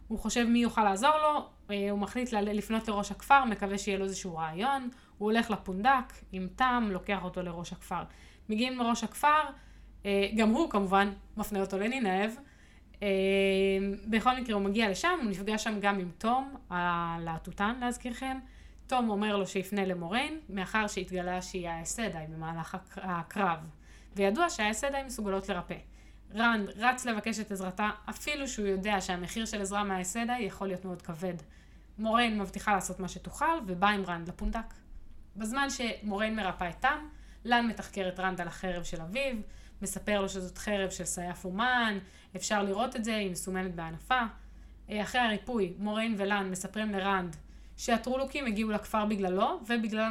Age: 20-39